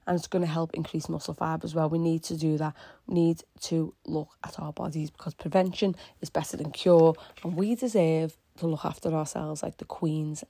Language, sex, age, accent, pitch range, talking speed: English, female, 30-49, British, 155-170 Hz, 215 wpm